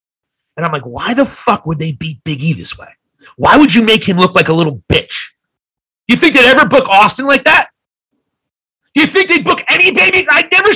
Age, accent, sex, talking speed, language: 40-59, American, male, 225 wpm, English